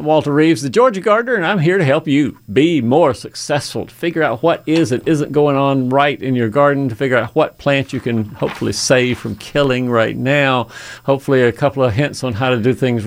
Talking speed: 230 wpm